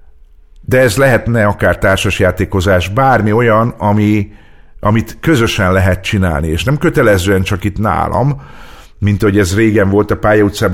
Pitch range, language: 90-110 Hz, Hungarian